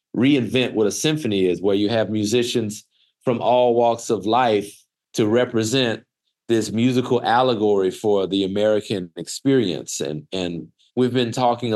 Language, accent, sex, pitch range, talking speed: English, American, male, 100-120 Hz, 145 wpm